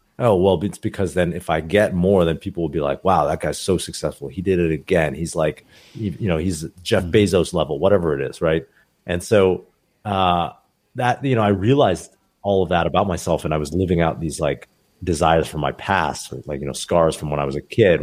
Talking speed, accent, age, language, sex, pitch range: 230 wpm, American, 30-49, English, male, 80-100 Hz